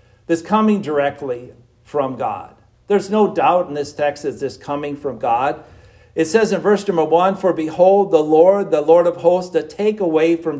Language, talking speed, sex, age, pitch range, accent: English, 190 wpm, male, 50-69, 145-205 Hz, American